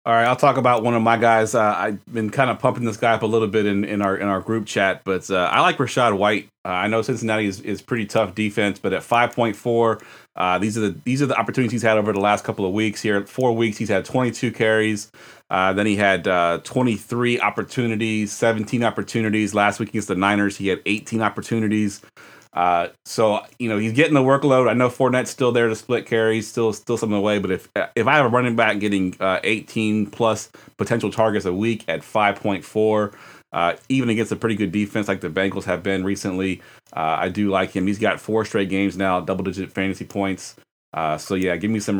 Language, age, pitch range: English, 30-49, 95-115 Hz